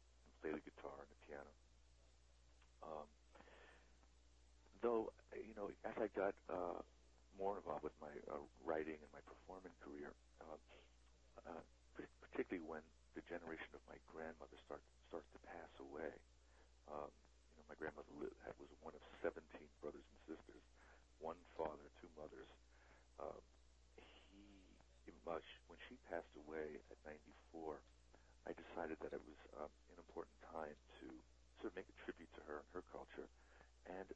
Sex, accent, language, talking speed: male, American, English, 140 wpm